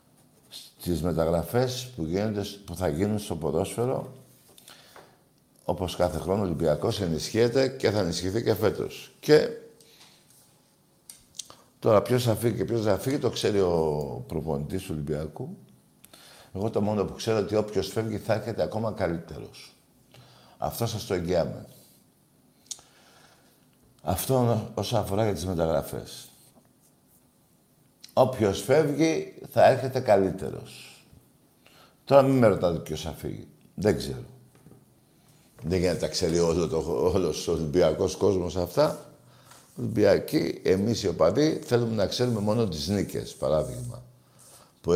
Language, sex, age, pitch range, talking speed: Greek, male, 60-79, 85-120 Hz, 125 wpm